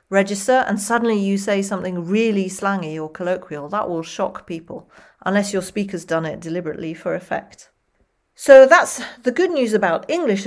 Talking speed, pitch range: 165 wpm, 170-210 Hz